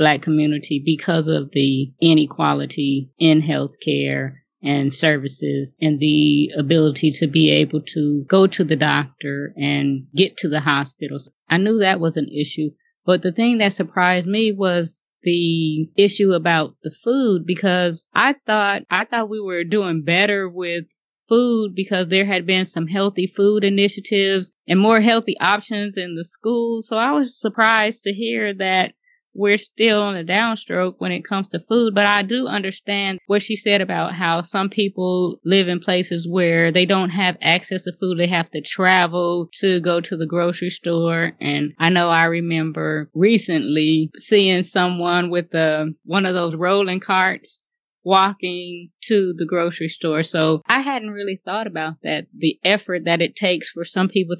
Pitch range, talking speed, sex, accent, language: 160-200 Hz, 170 wpm, female, American, English